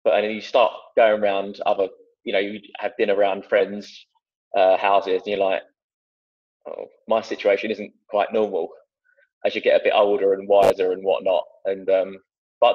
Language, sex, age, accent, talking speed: English, male, 20-39, British, 180 wpm